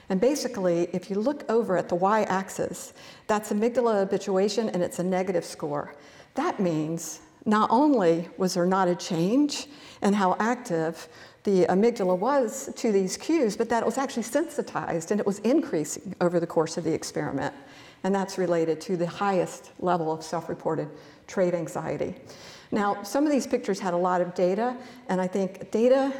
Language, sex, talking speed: English, female, 175 wpm